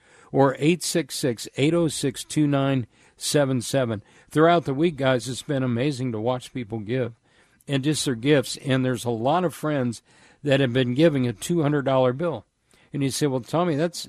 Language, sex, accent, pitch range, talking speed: English, male, American, 125-160 Hz, 155 wpm